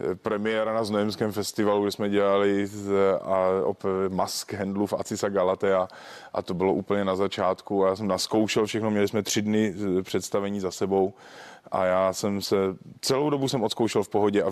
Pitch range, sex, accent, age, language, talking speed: 95-105 Hz, male, native, 20-39, Czech, 175 wpm